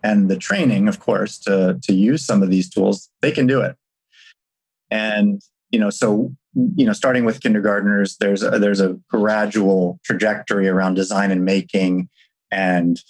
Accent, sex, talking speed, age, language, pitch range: American, male, 165 wpm, 30-49, English, 100-150 Hz